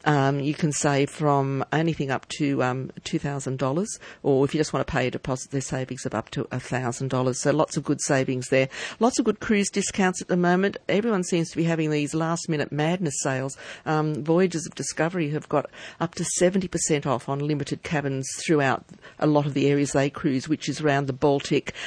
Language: English